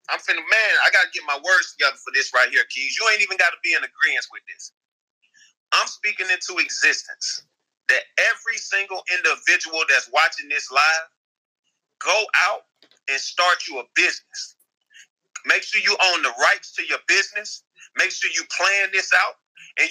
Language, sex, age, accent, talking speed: English, male, 30-49, American, 175 wpm